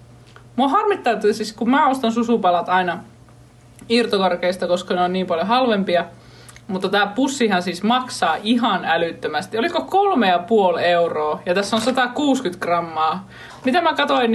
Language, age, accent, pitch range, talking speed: Finnish, 20-39, native, 165-235 Hz, 140 wpm